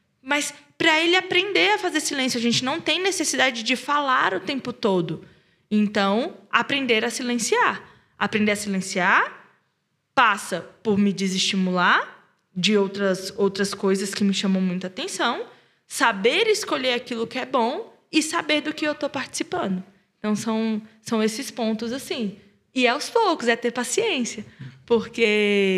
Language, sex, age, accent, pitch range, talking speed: Portuguese, female, 20-39, Brazilian, 205-295 Hz, 150 wpm